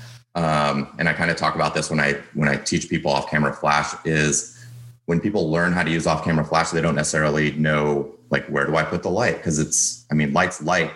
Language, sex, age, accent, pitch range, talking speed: English, male, 30-49, American, 75-80 Hz, 240 wpm